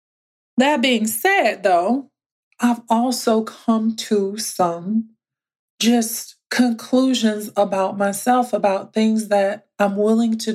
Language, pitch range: English, 185-220 Hz